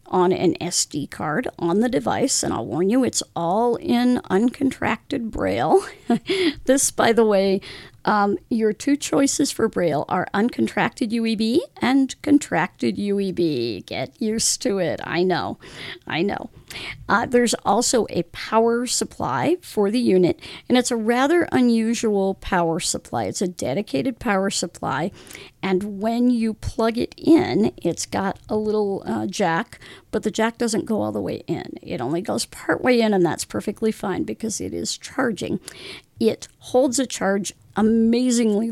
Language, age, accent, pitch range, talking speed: English, 50-69, American, 190-250 Hz, 155 wpm